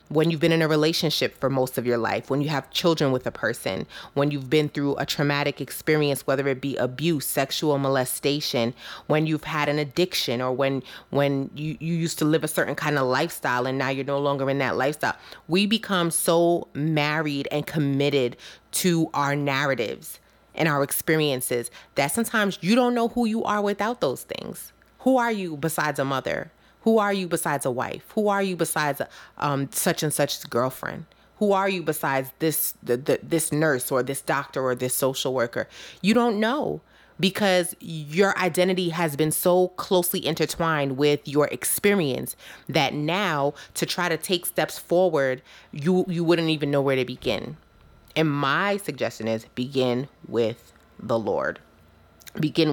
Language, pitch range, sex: English, 135-170 Hz, female